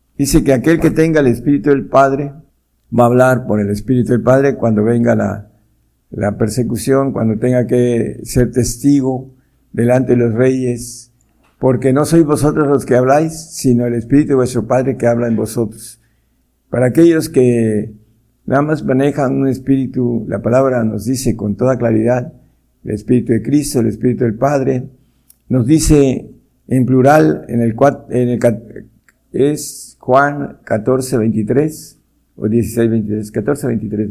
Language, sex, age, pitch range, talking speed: Spanish, male, 60-79, 115-140 Hz, 150 wpm